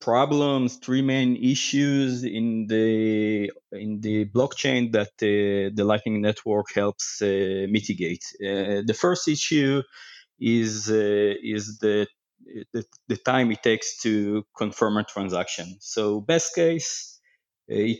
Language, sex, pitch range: English, male, 100-120 Hz